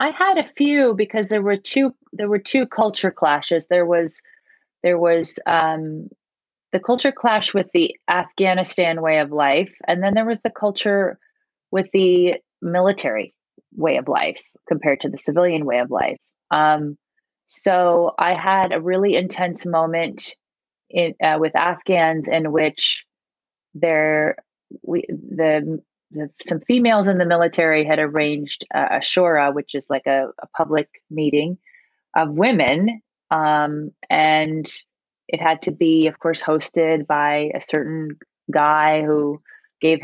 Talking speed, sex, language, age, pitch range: 140 wpm, female, English, 30-49, 155-190 Hz